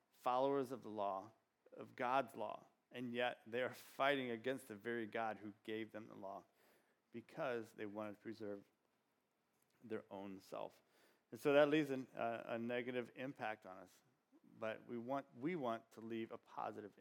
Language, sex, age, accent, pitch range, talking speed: English, male, 40-59, American, 110-135 Hz, 175 wpm